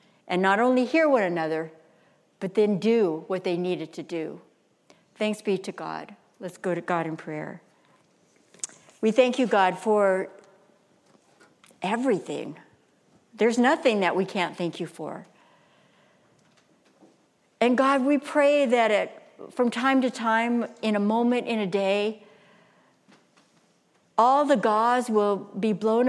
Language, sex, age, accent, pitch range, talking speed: English, female, 60-79, American, 195-255 Hz, 135 wpm